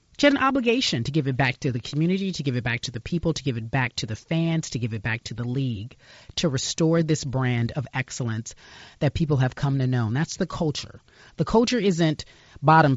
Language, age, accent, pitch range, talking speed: English, 30-49, American, 120-170 Hz, 240 wpm